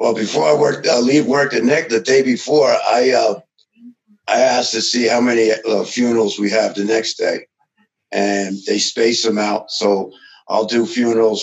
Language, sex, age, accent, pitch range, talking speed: English, male, 50-69, American, 100-130 Hz, 190 wpm